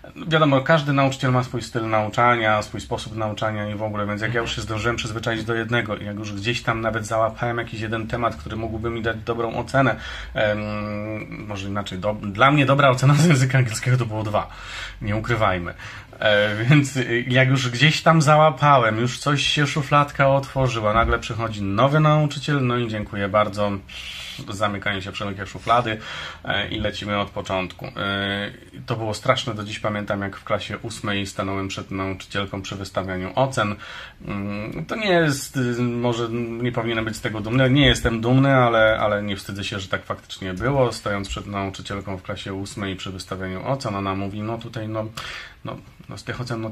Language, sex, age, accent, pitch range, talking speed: Polish, male, 30-49, native, 100-120 Hz, 175 wpm